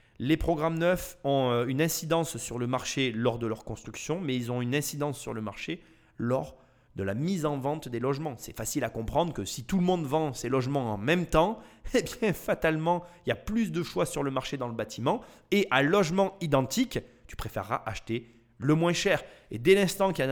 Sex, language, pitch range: male, French, 120-155 Hz